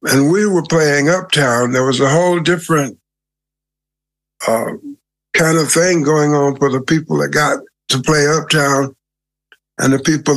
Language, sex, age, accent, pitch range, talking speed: English, male, 60-79, American, 130-160 Hz, 155 wpm